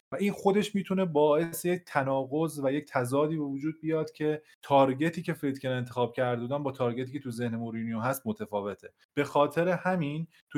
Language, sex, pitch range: Persian, male, 110-145 Hz